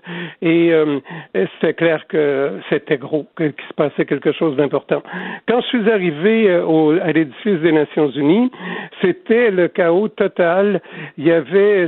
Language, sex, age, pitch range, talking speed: French, male, 60-79, 155-200 Hz, 145 wpm